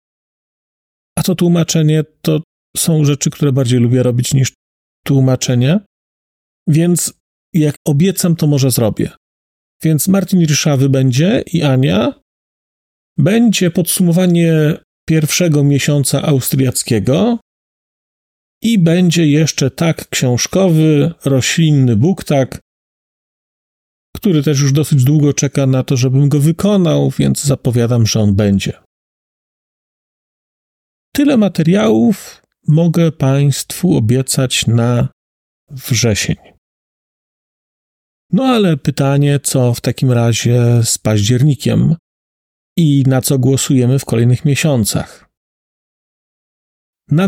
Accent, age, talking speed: native, 40-59, 95 wpm